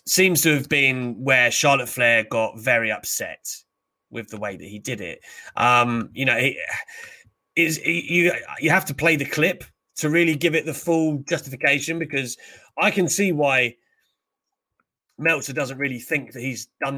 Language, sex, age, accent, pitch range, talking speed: English, male, 30-49, British, 125-170 Hz, 170 wpm